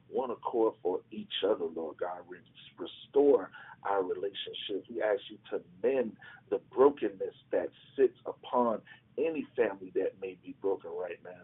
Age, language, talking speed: 50-69, English, 145 wpm